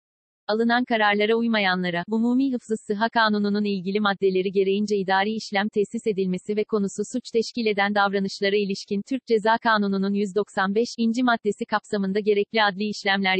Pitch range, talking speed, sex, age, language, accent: 200-230 Hz, 140 wpm, female, 40-59, Turkish, native